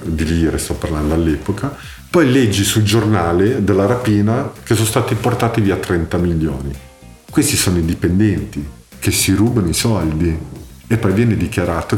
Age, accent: 50-69, native